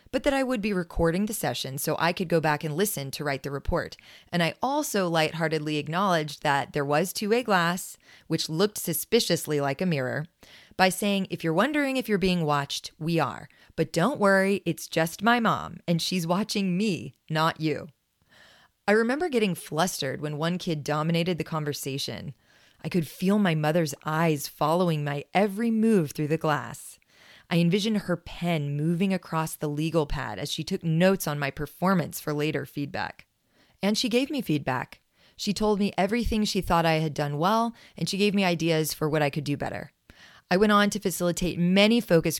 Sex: female